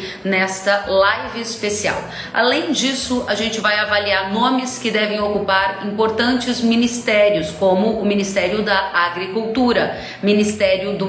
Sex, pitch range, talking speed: female, 200-235 Hz, 120 wpm